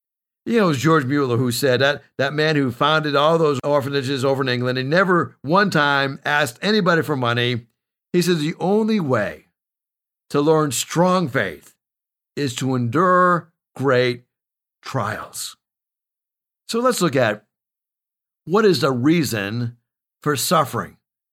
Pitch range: 145-195 Hz